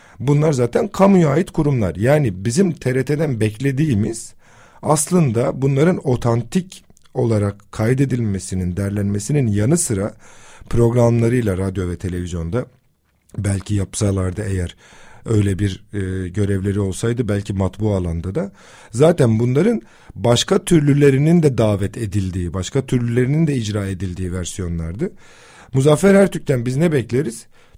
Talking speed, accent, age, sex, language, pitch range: 110 wpm, native, 50-69, male, Turkish, 100-140 Hz